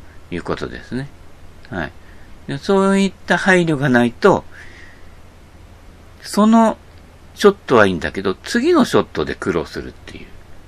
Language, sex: Japanese, male